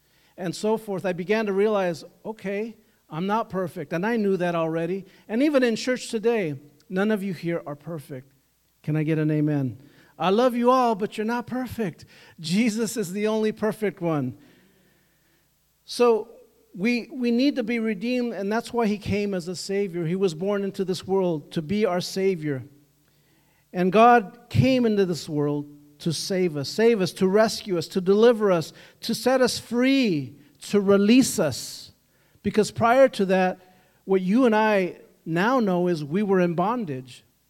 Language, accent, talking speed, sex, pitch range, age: English, American, 175 wpm, male, 160-220 Hz, 50-69